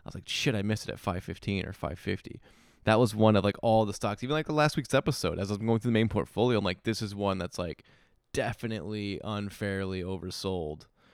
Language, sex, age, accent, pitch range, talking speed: English, male, 20-39, American, 95-115 Hz, 230 wpm